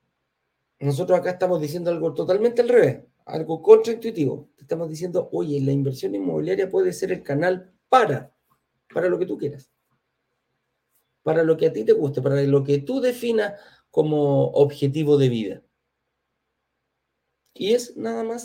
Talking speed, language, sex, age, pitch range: 155 wpm, Spanish, male, 40-59, 140-185 Hz